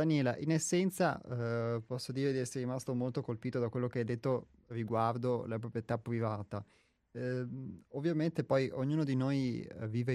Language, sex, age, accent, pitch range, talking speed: Italian, male, 30-49, native, 110-125 Hz, 160 wpm